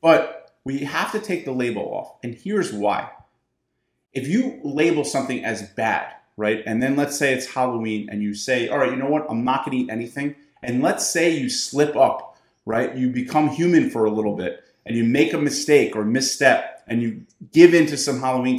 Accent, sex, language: American, male, English